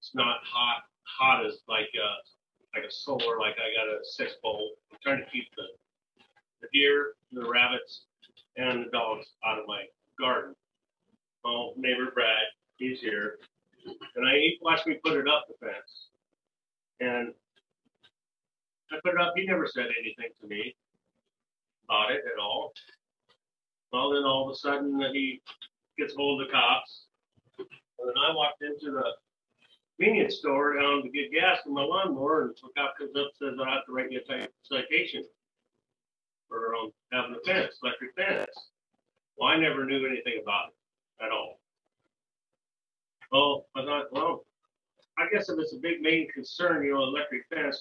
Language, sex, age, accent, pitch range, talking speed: English, male, 40-59, American, 130-170 Hz, 170 wpm